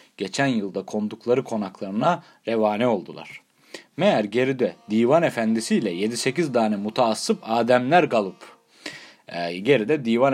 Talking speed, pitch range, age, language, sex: 100 wpm, 115-175 Hz, 40-59, Turkish, male